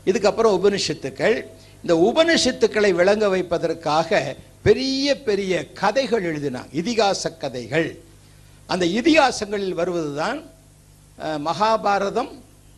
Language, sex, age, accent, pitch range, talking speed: Tamil, male, 60-79, native, 135-200 Hz, 75 wpm